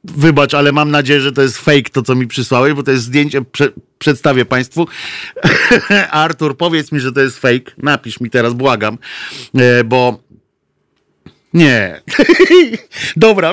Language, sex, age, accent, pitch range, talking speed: Polish, male, 50-69, native, 120-145 Hz, 145 wpm